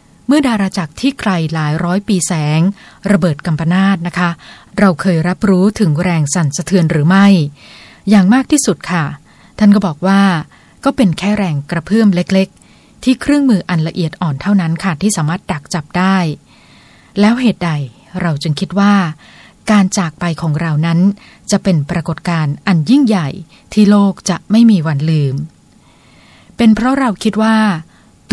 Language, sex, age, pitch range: Thai, female, 20-39, 165-205 Hz